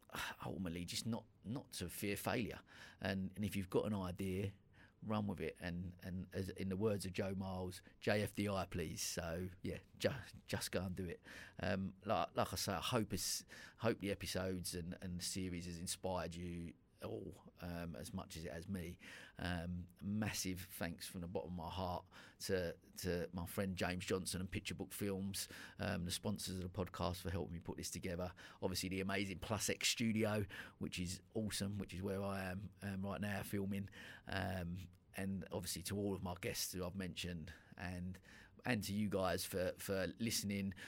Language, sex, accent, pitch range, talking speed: English, male, British, 90-100 Hz, 195 wpm